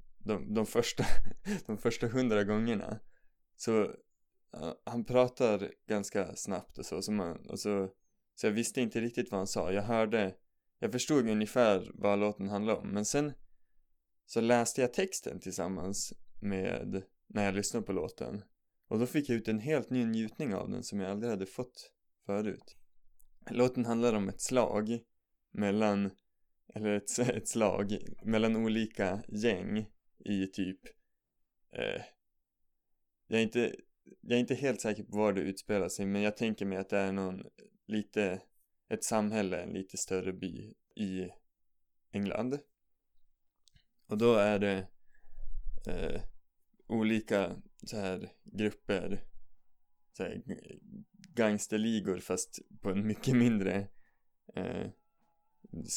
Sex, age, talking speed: male, 20-39, 140 wpm